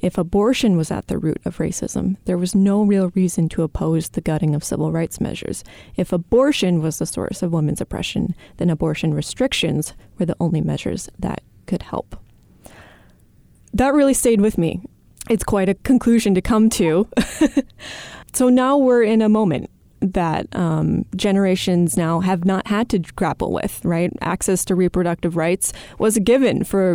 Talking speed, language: 170 wpm, English